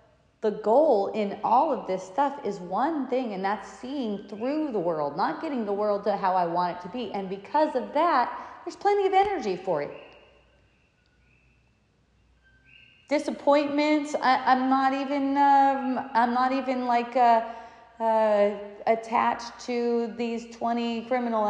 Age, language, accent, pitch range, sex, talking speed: 30-49, English, American, 200-275 Hz, female, 150 wpm